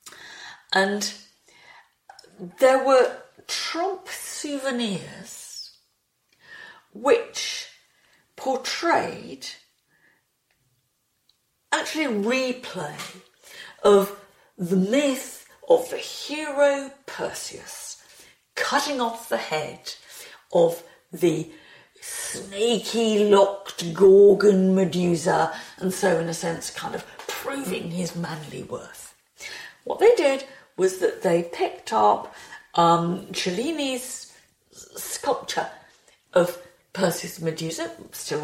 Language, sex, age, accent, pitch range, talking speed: English, female, 50-69, British, 185-295 Hz, 80 wpm